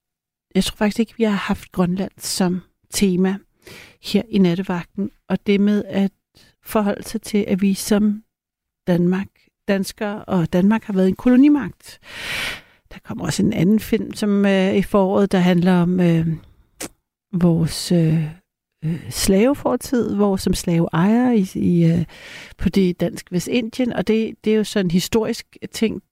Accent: native